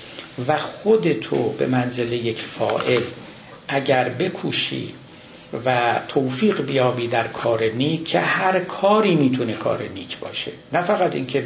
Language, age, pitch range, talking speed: Persian, 60-79, 125-170 Hz, 125 wpm